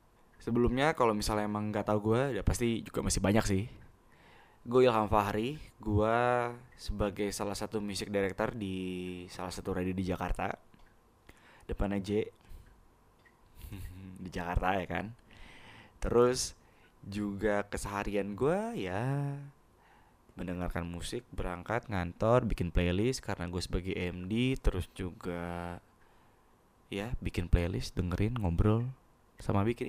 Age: 20-39